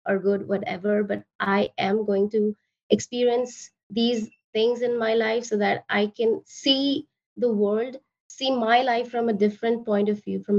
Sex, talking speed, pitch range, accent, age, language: female, 175 wpm, 205-245 Hz, Indian, 20-39, English